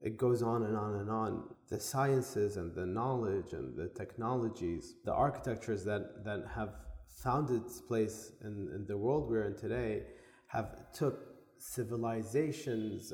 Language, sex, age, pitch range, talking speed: English, male, 30-49, 105-125 Hz, 150 wpm